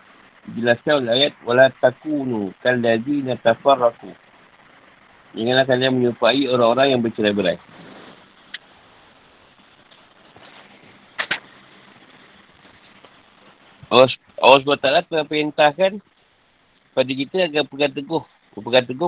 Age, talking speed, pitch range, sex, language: 50-69, 65 wpm, 120-145 Hz, male, Malay